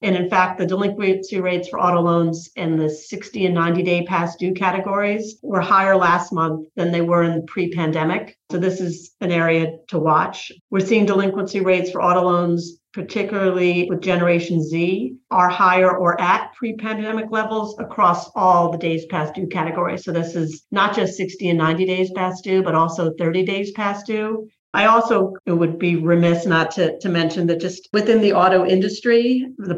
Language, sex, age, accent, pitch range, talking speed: English, female, 40-59, American, 170-195 Hz, 185 wpm